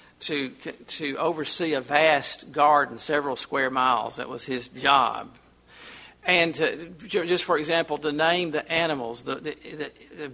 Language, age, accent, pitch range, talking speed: English, 50-69, American, 145-175 Hz, 145 wpm